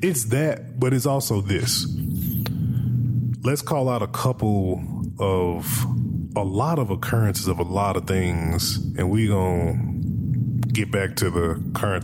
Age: 20-39